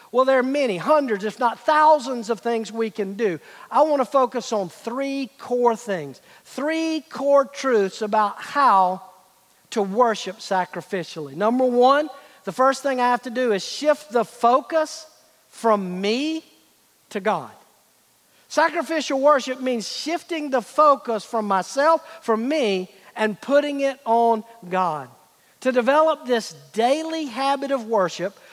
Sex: male